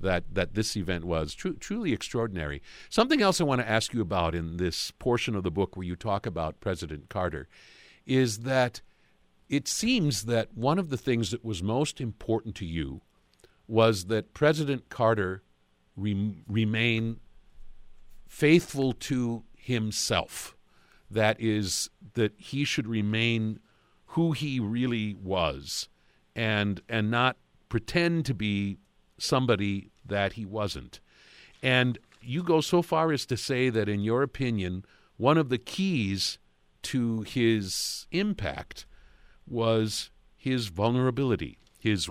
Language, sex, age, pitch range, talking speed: English, male, 50-69, 95-125 Hz, 135 wpm